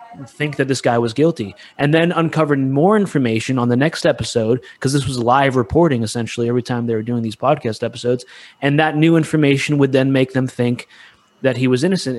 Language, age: English, 30-49